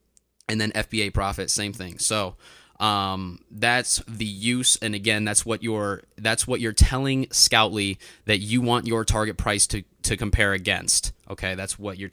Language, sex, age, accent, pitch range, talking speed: English, male, 20-39, American, 100-120 Hz, 175 wpm